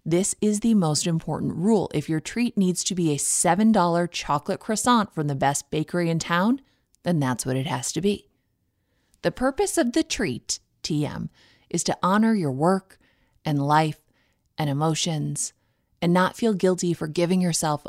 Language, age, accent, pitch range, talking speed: English, 20-39, American, 145-190 Hz, 170 wpm